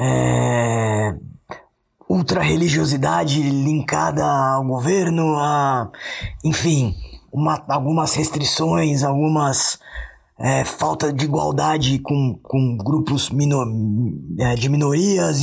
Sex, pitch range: male, 125-160 Hz